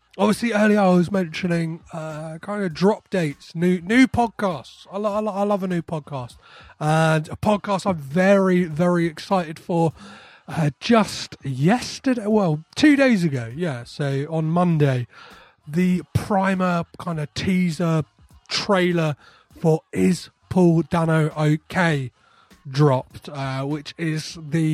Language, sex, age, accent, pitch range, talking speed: English, male, 30-49, British, 150-200 Hz, 140 wpm